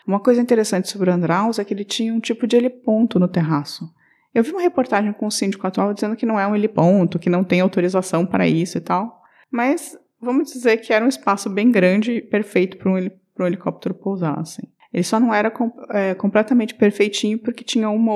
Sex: female